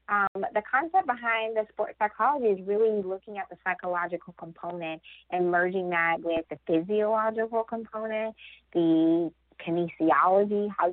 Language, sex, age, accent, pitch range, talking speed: English, female, 20-39, American, 160-200 Hz, 130 wpm